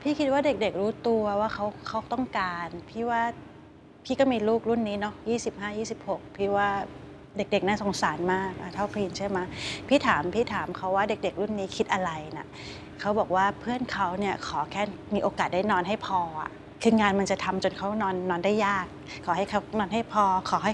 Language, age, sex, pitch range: Thai, 20-39, female, 185-225 Hz